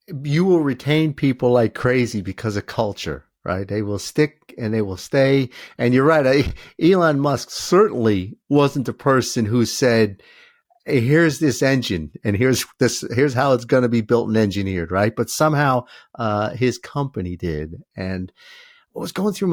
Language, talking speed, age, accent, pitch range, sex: English, 170 wpm, 50-69, American, 105-140 Hz, male